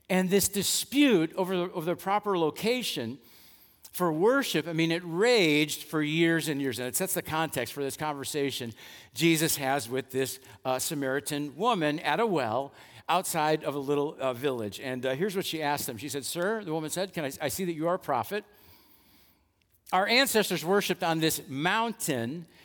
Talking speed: 190 wpm